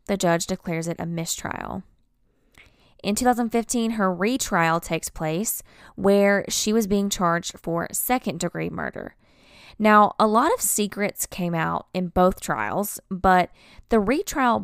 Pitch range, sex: 165-205 Hz, female